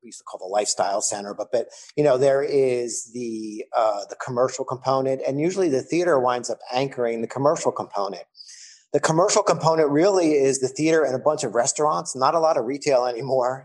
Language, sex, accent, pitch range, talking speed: English, male, American, 120-145 Hz, 200 wpm